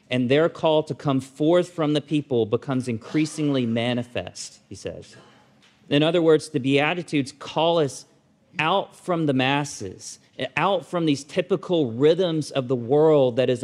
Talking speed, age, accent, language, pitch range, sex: 155 wpm, 40-59, American, English, 130-175 Hz, male